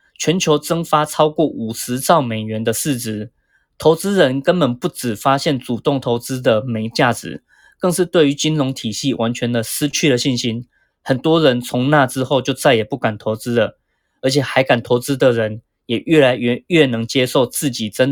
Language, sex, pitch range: Chinese, male, 115-150 Hz